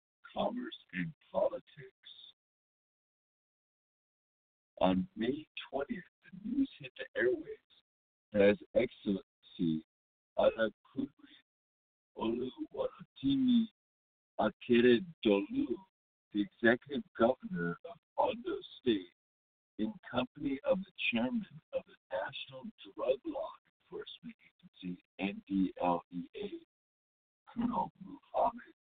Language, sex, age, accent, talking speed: English, male, 60-79, American, 80 wpm